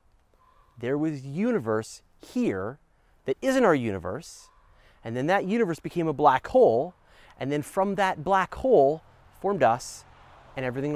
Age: 30-49